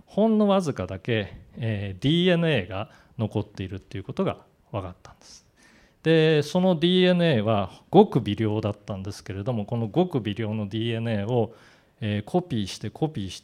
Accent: native